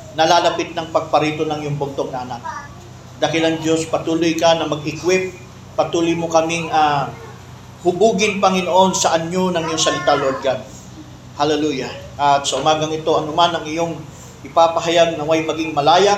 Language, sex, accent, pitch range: Filipino, male, native, 150-180 Hz